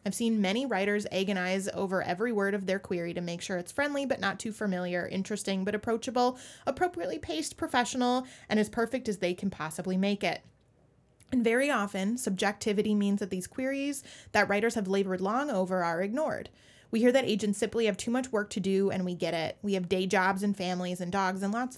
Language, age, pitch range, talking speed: English, 20-39, 185-230 Hz, 210 wpm